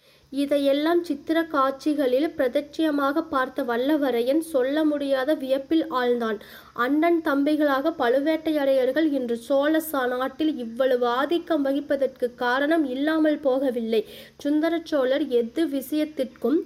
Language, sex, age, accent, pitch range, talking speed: Tamil, female, 20-39, native, 250-300 Hz, 85 wpm